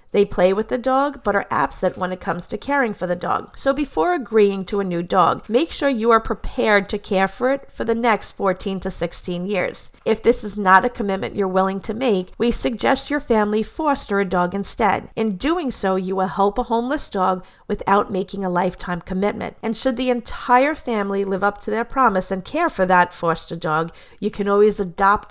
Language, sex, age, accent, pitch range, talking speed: English, female, 40-59, American, 190-235 Hz, 215 wpm